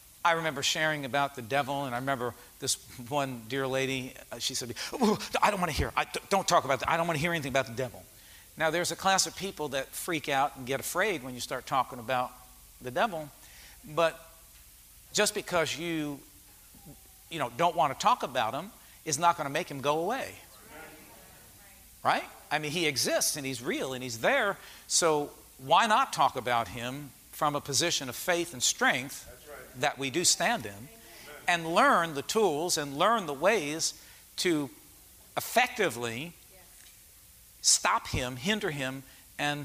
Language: English